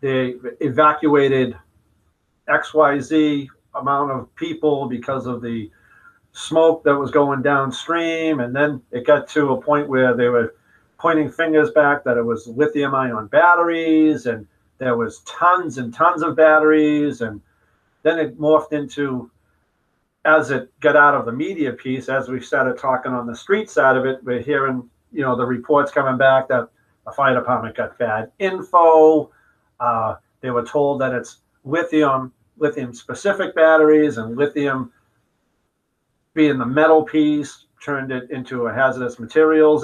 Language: English